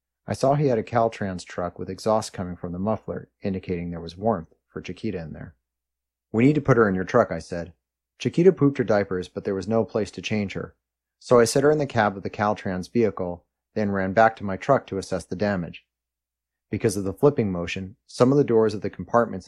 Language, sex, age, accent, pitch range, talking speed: English, male, 30-49, American, 85-110 Hz, 235 wpm